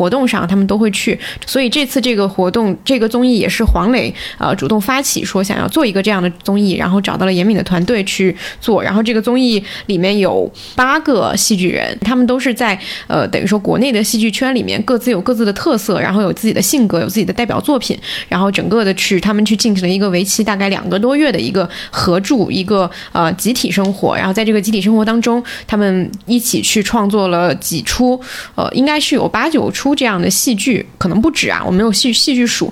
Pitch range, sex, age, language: 190-235 Hz, female, 20-39, Chinese